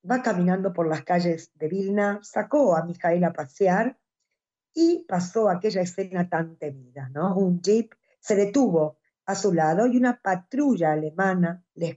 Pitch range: 165-225 Hz